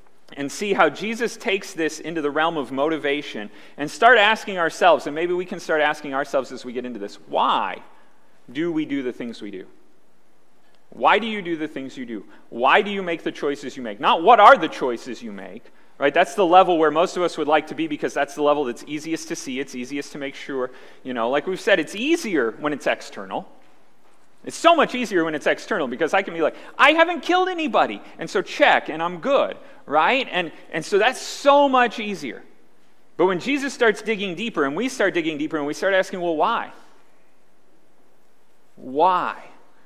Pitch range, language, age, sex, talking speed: 145-220 Hz, English, 30-49, male, 210 wpm